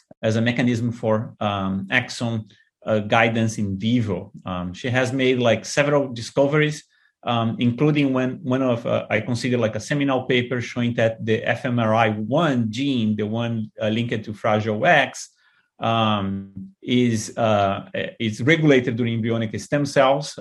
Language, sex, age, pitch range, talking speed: English, male, 30-49, 110-130 Hz, 145 wpm